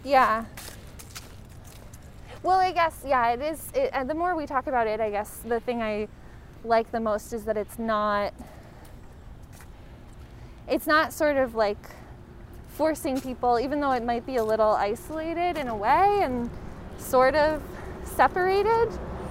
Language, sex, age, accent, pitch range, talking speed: English, female, 20-39, American, 215-300 Hz, 145 wpm